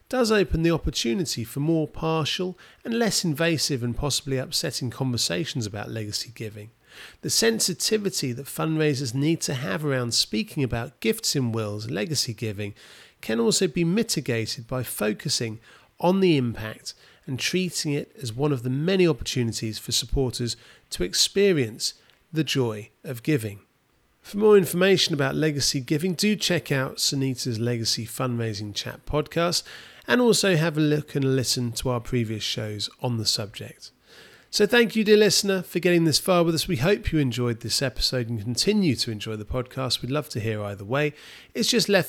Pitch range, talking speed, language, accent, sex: 120-170 Hz, 170 wpm, English, British, male